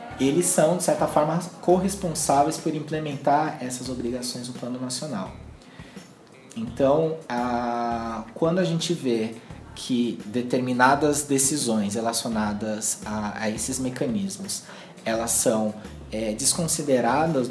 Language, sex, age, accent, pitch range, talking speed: Portuguese, male, 20-39, Brazilian, 110-145 Hz, 105 wpm